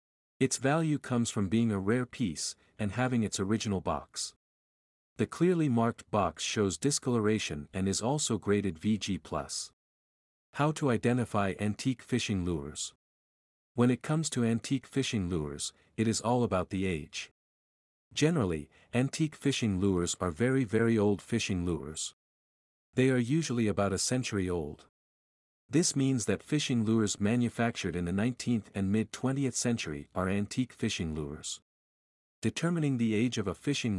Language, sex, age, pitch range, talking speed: English, male, 50-69, 90-125 Hz, 145 wpm